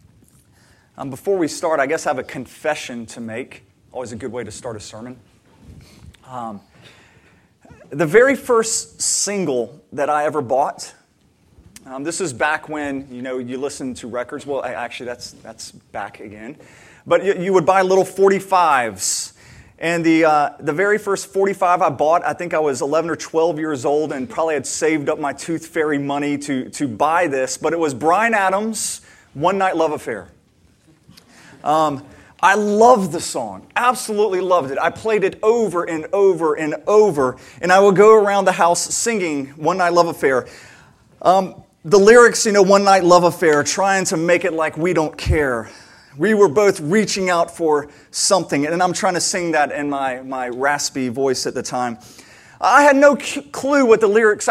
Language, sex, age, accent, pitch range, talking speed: English, male, 30-49, American, 145-195 Hz, 180 wpm